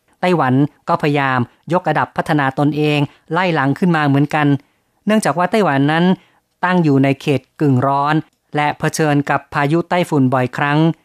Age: 30-49